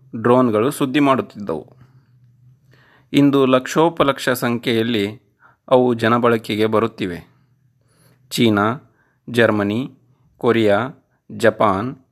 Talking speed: 70 wpm